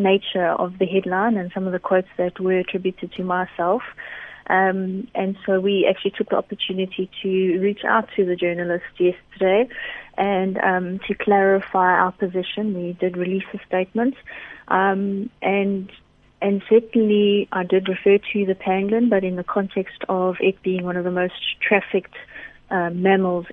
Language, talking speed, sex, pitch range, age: English, 165 wpm, female, 175-195 Hz, 30-49